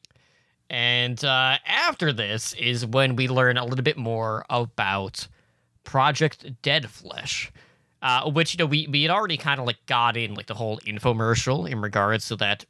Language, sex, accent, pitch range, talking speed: English, male, American, 120-150 Hz, 175 wpm